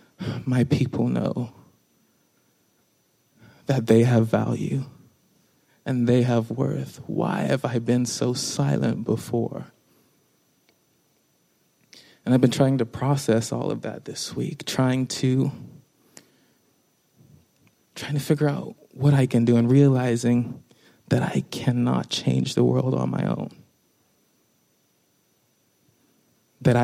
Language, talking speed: English, 115 wpm